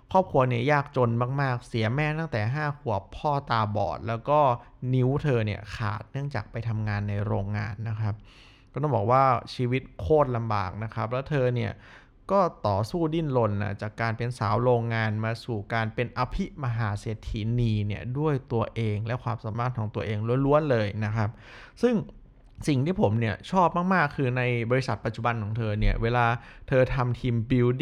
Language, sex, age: Thai, male, 20-39